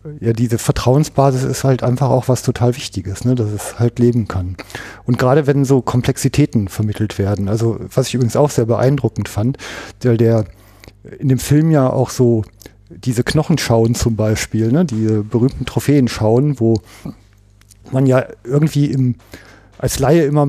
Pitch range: 115-140 Hz